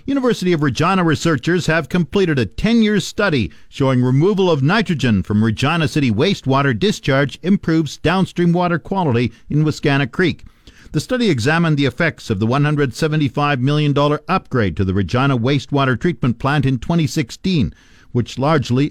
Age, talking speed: 50-69, 145 wpm